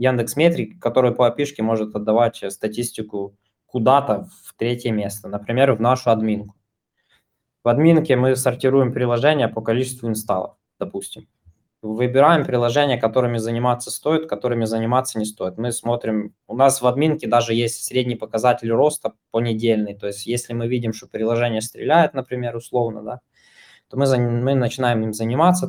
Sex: male